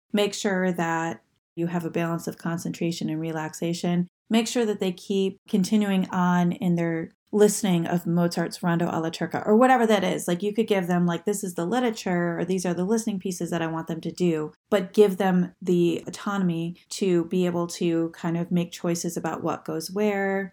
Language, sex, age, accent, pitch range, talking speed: English, female, 30-49, American, 170-200 Hz, 200 wpm